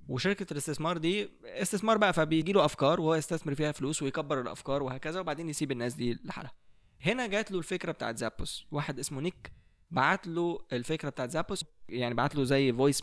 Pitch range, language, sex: 130-180 Hz, Arabic, male